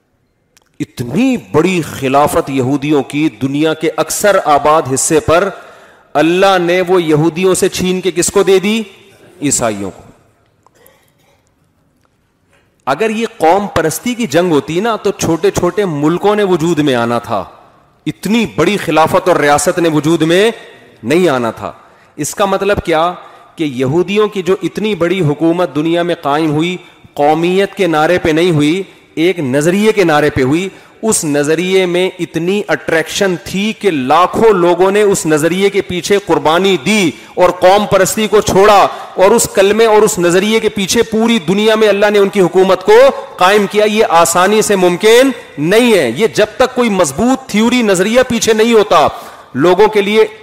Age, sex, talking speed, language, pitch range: 40-59, male, 165 wpm, Urdu, 155-205 Hz